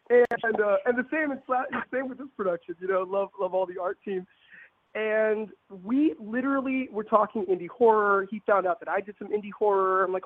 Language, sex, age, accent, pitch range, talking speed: English, male, 30-49, American, 190-250 Hz, 210 wpm